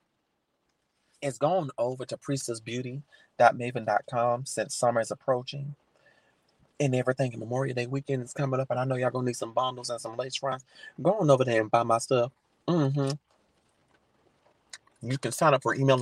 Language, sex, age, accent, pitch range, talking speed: English, male, 30-49, American, 120-140 Hz, 165 wpm